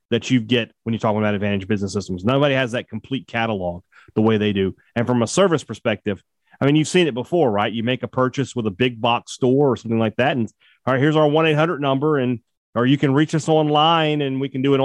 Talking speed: 255 wpm